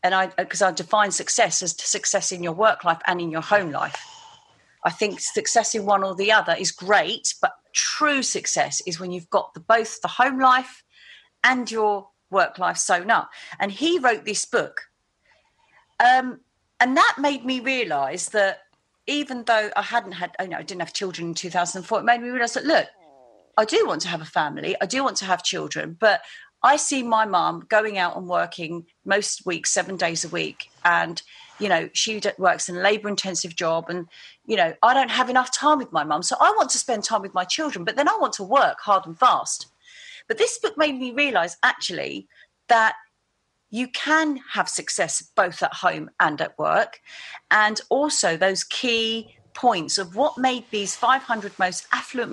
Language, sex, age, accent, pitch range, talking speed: English, female, 40-59, British, 185-260 Hz, 200 wpm